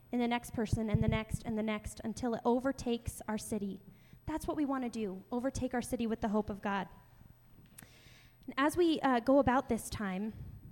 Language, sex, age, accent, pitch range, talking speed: English, female, 10-29, American, 210-275 Hz, 205 wpm